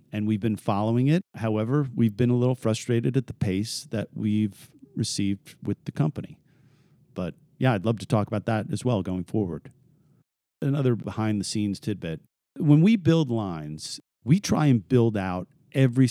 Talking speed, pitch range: 175 wpm, 100-125 Hz